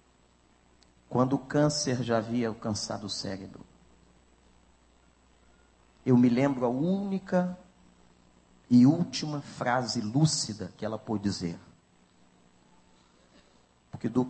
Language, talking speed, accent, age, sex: Portuguese, 90 wpm, Brazilian, 40-59, male